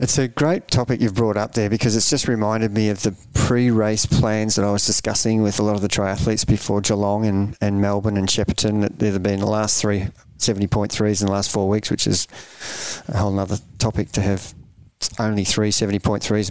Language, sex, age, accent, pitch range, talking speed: English, male, 30-49, Australian, 105-120 Hz, 210 wpm